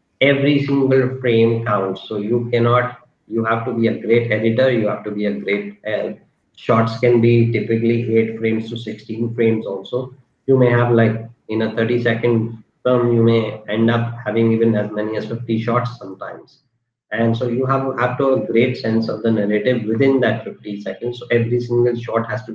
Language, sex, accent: Hindi, male, native